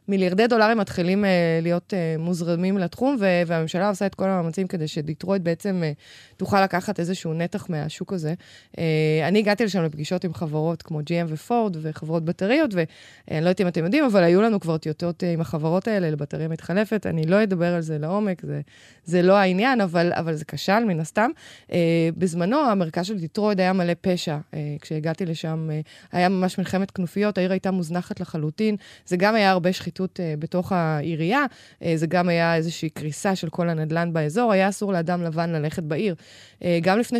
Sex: female